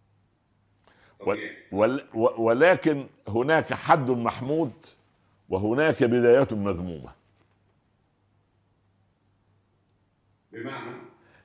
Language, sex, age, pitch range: Arabic, male, 60-79, 105-155 Hz